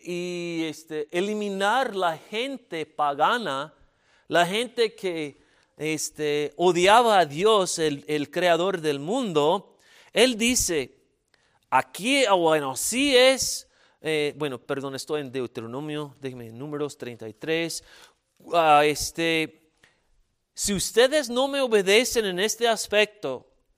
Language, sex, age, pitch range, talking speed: Spanish, male, 40-59, 155-225 Hz, 110 wpm